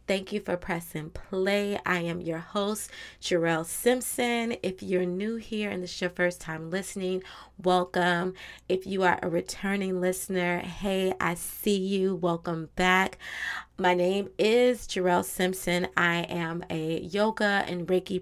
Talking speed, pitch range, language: 150 wpm, 175-205 Hz, English